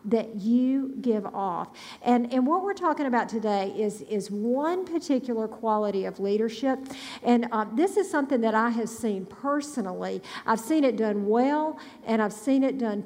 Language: English